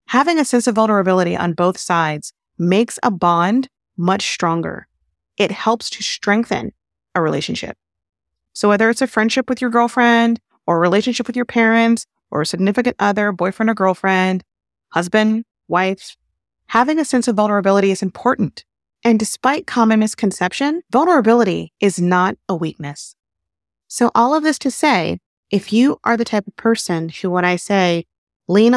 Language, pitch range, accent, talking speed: English, 185-245 Hz, American, 160 wpm